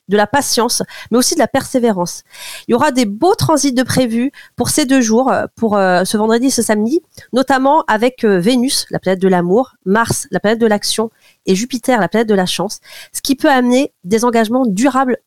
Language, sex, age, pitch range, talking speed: French, female, 30-49, 205-275 Hz, 205 wpm